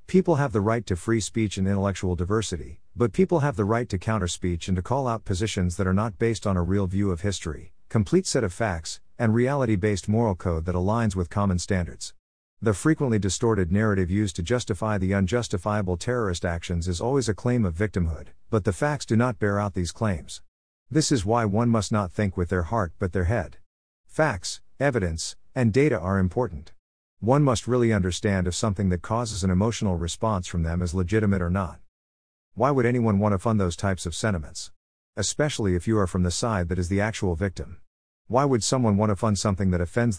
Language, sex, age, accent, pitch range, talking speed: English, male, 50-69, American, 90-115 Hz, 210 wpm